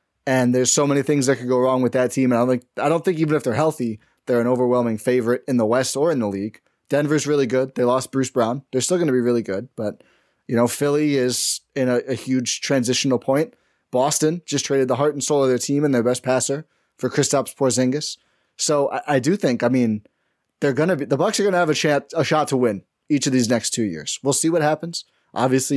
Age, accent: 20-39, American